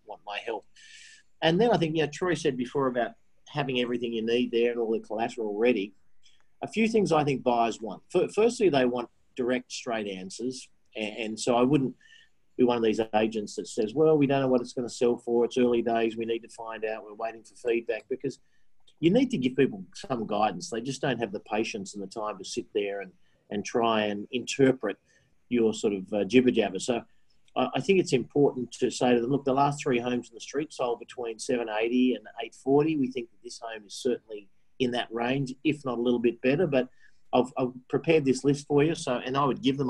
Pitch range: 115-140 Hz